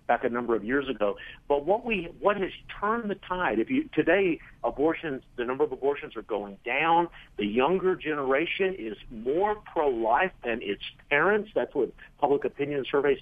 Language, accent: English, American